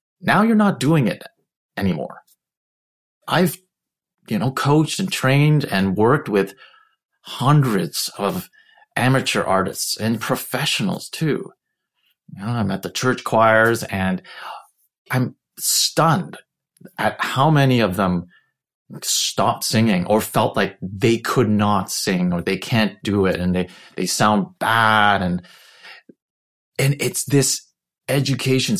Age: 30-49